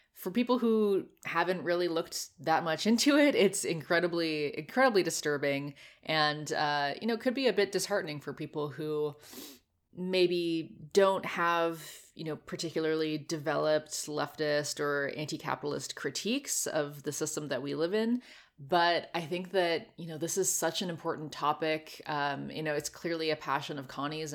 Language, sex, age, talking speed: English, female, 20-39, 160 wpm